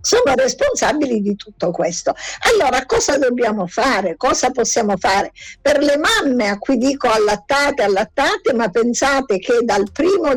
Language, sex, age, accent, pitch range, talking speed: Italian, female, 50-69, native, 220-285 Hz, 145 wpm